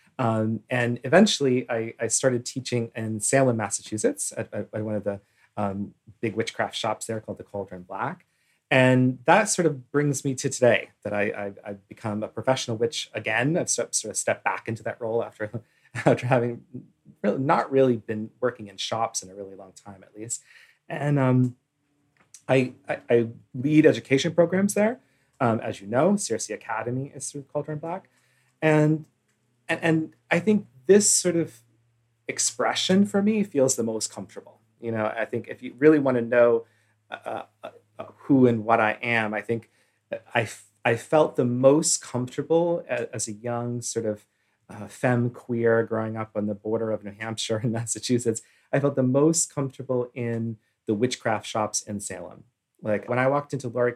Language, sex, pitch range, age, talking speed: English, male, 110-135 Hz, 30-49, 175 wpm